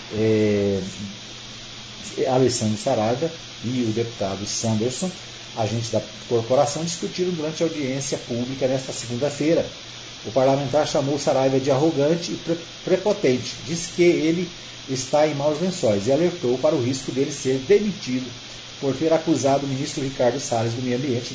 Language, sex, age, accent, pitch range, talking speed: Portuguese, male, 40-59, Brazilian, 115-155 Hz, 140 wpm